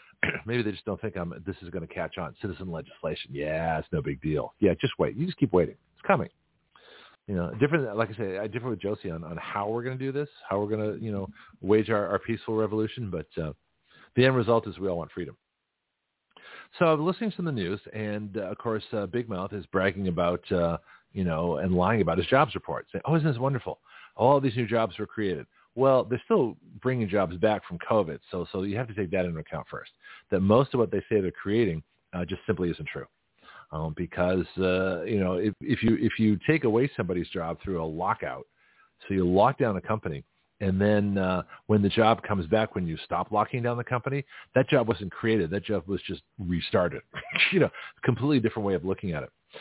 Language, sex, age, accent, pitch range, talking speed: English, male, 40-59, American, 95-120 Hz, 230 wpm